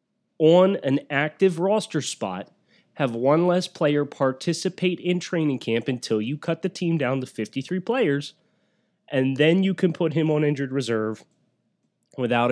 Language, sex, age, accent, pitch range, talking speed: English, male, 30-49, American, 120-170 Hz, 155 wpm